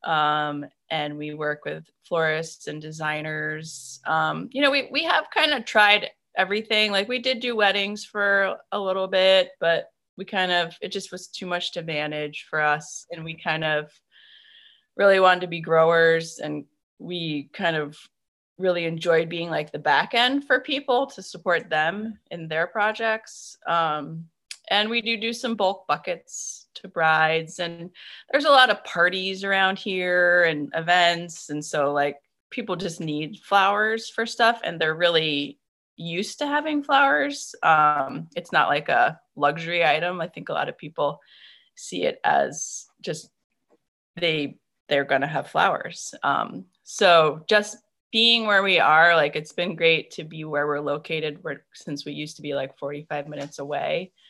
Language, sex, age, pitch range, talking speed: English, female, 20-39, 155-210 Hz, 170 wpm